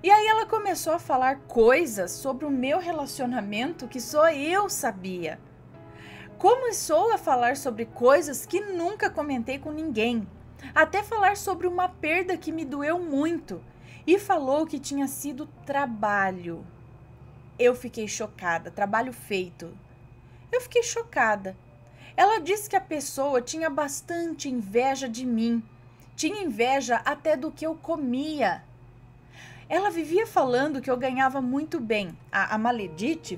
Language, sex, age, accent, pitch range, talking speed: Portuguese, female, 20-39, Brazilian, 235-350 Hz, 135 wpm